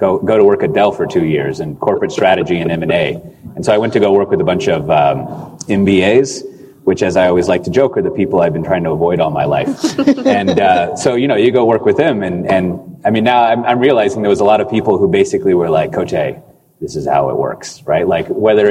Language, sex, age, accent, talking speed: English, male, 30-49, American, 265 wpm